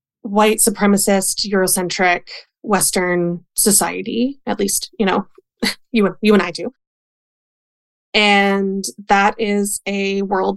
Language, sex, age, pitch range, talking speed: English, female, 20-39, 185-215 Hz, 110 wpm